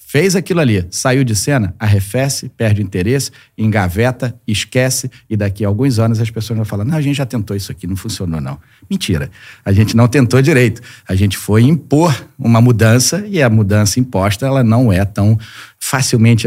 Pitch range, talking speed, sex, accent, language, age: 100-130 Hz, 190 wpm, male, Brazilian, Portuguese, 40-59